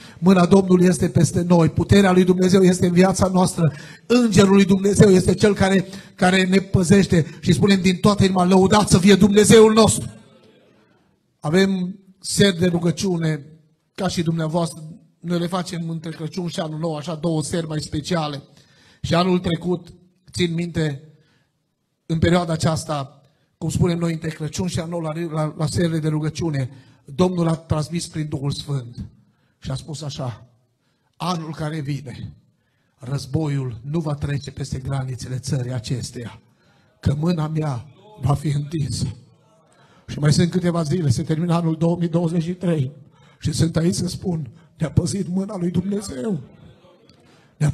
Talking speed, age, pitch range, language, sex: 150 wpm, 30-49, 150-185 Hz, Romanian, male